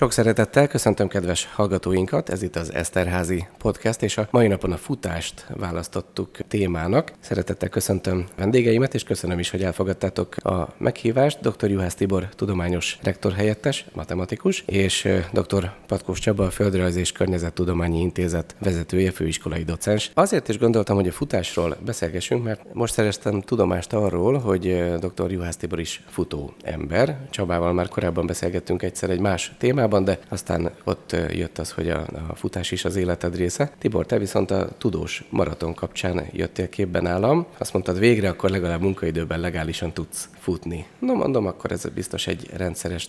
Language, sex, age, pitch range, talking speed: Hungarian, male, 30-49, 90-105 Hz, 155 wpm